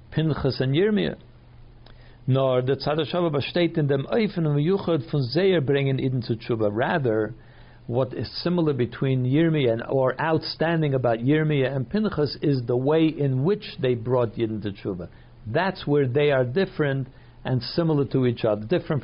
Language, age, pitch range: English, 60-79, 120-155 Hz